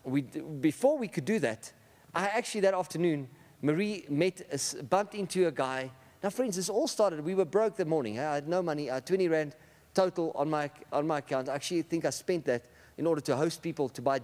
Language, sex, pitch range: English, male, 140-180 Hz